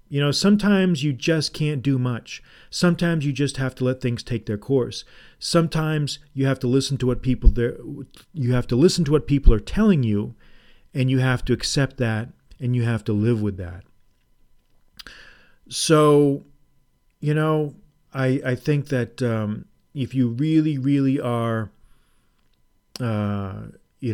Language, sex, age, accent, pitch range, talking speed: English, male, 40-59, American, 110-140 Hz, 160 wpm